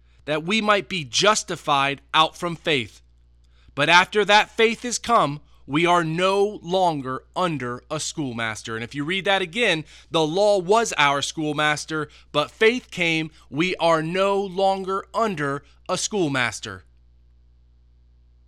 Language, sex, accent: English, male, American